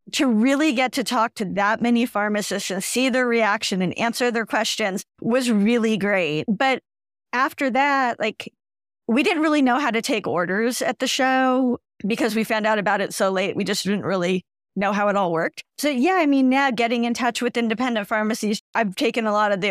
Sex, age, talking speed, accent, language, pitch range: female, 40-59, 210 wpm, American, English, 200-245 Hz